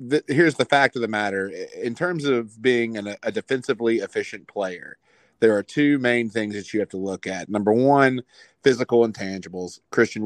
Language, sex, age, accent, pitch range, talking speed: English, male, 40-59, American, 100-115 Hz, 180 wpm